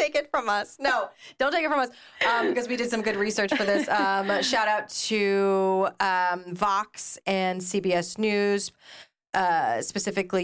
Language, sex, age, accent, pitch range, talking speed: English, female, 30-49, American, 175-225 Hz, 170 wpm